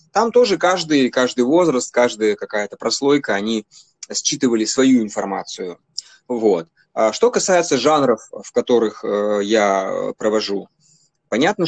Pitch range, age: 110-155 Hz, 20-39